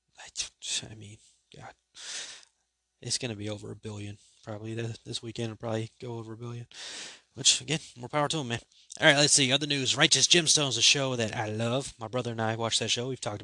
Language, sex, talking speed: English, male, 215 wpm